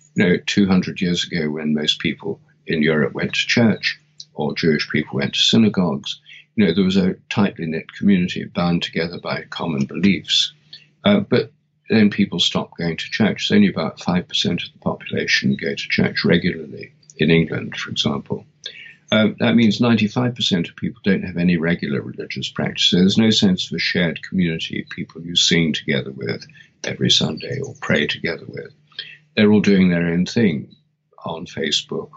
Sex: male